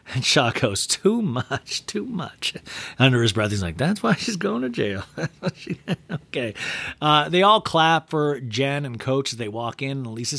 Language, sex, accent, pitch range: English, male, American, 110-150 Hz